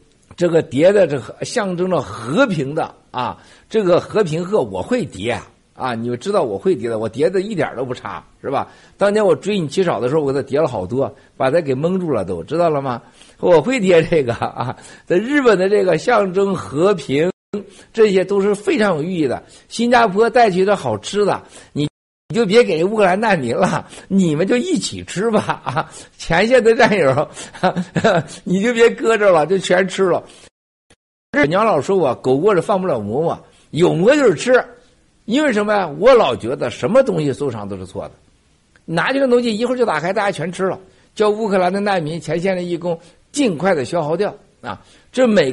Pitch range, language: 150-220 Hz, Chinese